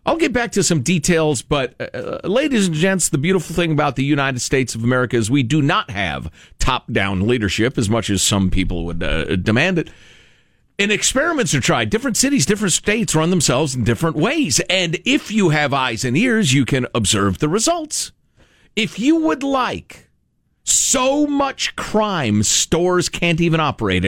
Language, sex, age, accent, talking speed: English, male, 50-69, American, 180 wpm